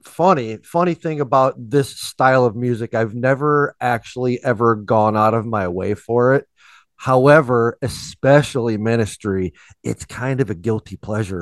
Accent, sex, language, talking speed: American, male, English, 145 wpm